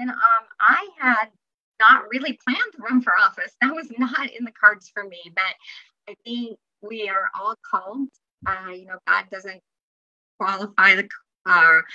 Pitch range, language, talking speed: 185-230 Hz, English, 170 wpm